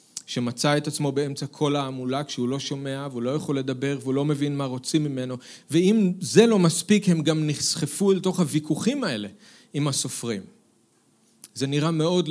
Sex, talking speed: male, 170 wpm